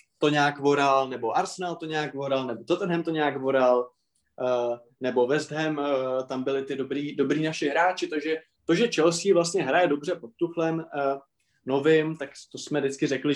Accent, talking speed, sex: native, 170 wpm, male